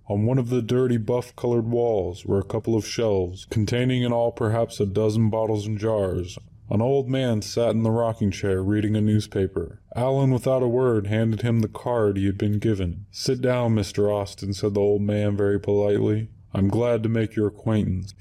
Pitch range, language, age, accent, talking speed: 100-120 Hz, English, 20-39, American, 200 wpm